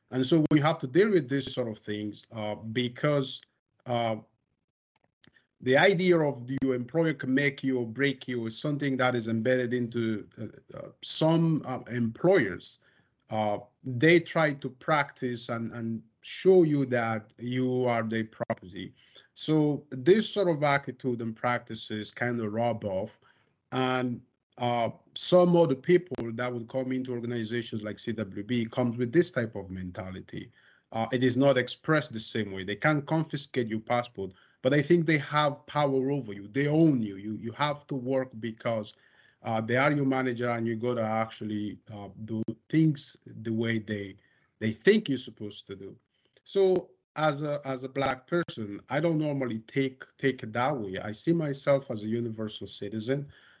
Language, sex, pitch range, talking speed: English, male, 110-145 Hz, 170 wpm